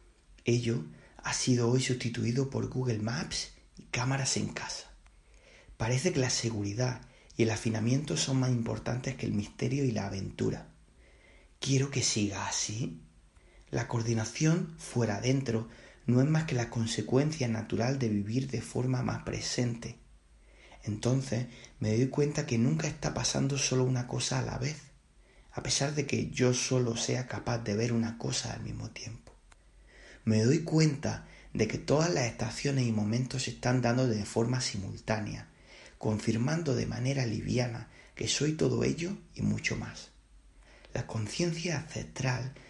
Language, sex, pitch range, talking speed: Spanish, male, 110-130 Hz, 150 wpm